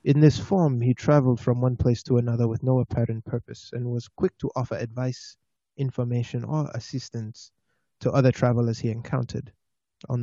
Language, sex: English, male